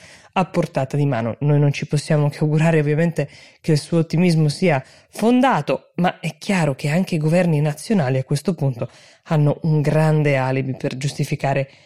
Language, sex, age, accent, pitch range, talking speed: Italian, female, 20-39, native, 145-190 Hz, 170 wpm